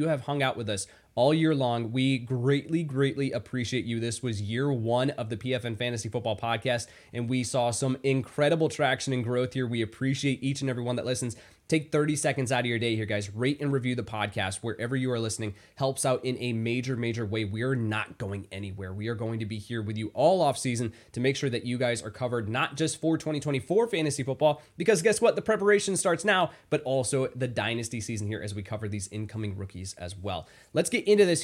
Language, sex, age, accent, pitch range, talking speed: English, male, 20-39, American, 115-145 Hz, 225 wpm